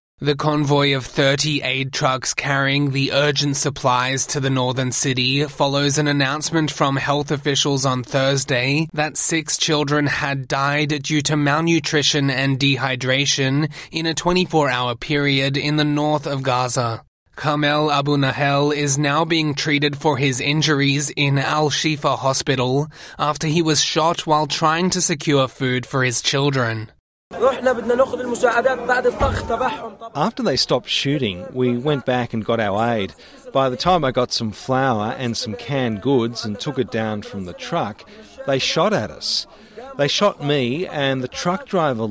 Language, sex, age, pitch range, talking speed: English, male, 20-39, 130-155 Hz, 150 wpm